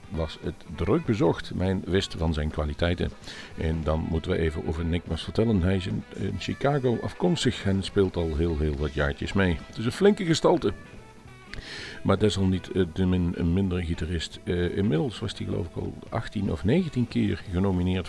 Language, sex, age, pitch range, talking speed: Dutch, male, 50-69, 80-105 Hz, 175 wpm